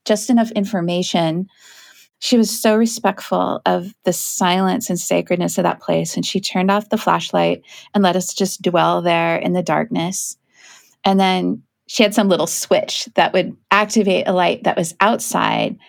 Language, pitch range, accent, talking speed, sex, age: English, 170-210 Hz, American, 170 wpm, female, 30-49